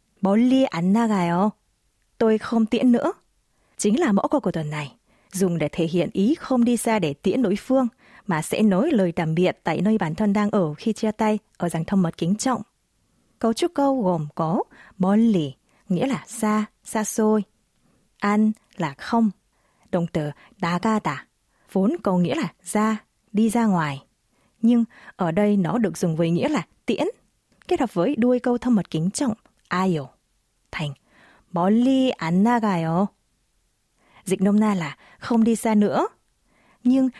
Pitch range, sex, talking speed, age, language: 180-235 Hz, female, 165 wpm, 20-39, Vietnamese